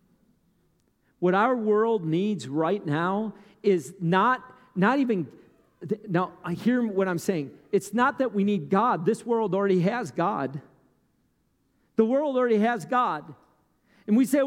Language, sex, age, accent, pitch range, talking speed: English, male, 50-69, American, 240-325 Hz, 145 wpm